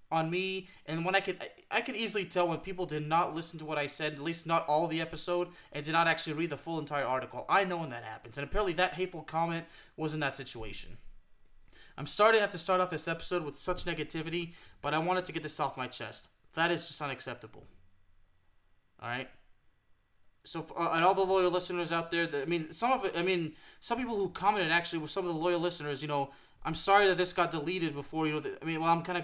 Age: 20-39